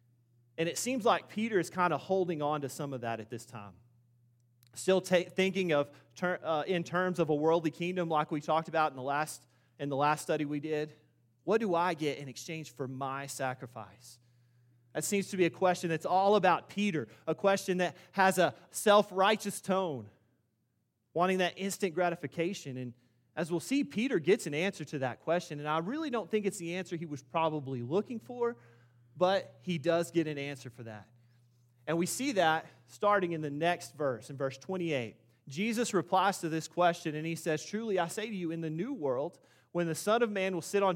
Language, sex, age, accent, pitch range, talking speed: English, male, 30-49, American, 125-185 Hz, 205 wpm